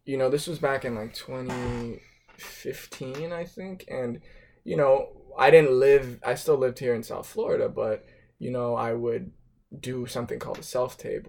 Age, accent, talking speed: 20-39, American, 175 wpm